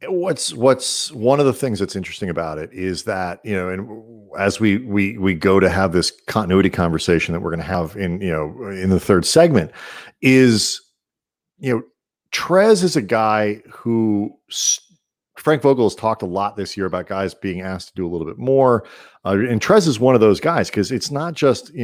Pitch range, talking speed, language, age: 95-130 Hz, 210 wpm, English, 40-59